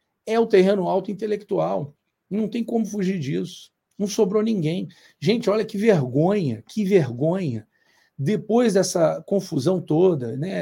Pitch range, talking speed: 145-205 Hz, 135 wpm